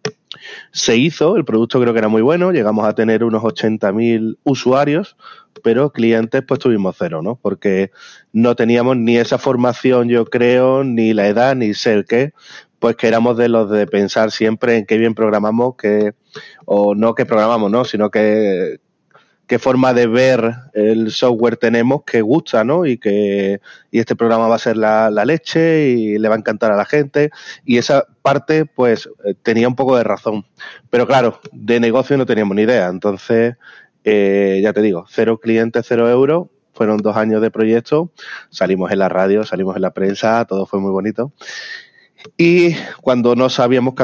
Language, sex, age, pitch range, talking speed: Spanish, male, 30-49, 110-130 Hz, 180 wpm